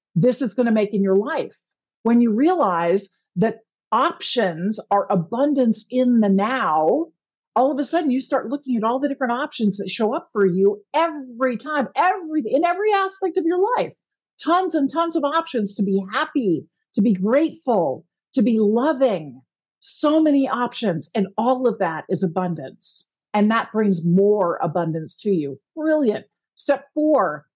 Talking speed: 165 wpm